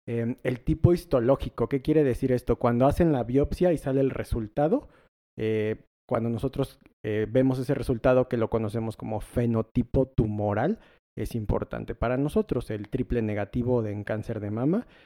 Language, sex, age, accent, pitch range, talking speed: Spanish, male, 40-59, Mexican, 110-135 Hz, 160 wpm